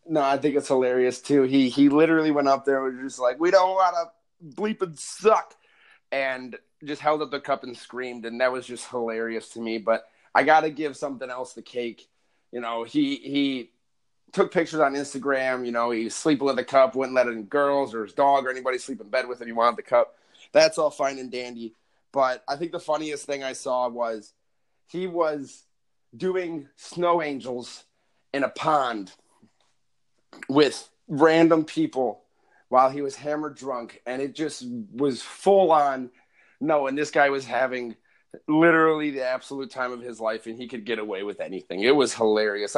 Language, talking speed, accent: English, 195 wpm, American